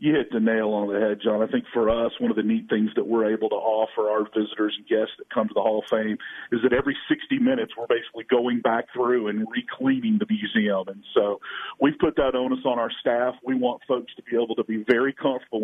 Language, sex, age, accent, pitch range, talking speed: English, male, 40-59, American, 105-130 Hz, 255 wpm